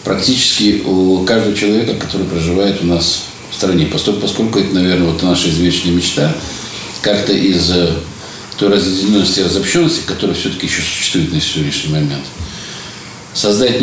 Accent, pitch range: native, 85-110 Hz